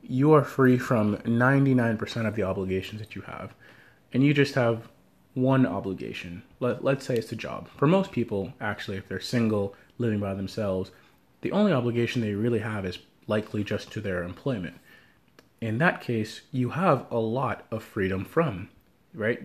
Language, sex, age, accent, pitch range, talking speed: English, male, 30-49, American, 100-125 Hz, 170 wpm